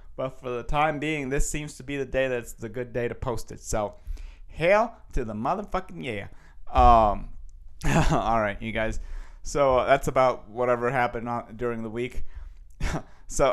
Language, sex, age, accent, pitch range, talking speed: English, male, 30-49, American, 120-150 Hz, 175 wpm